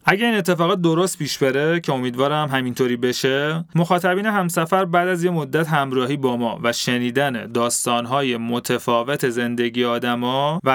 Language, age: Persian, 30-49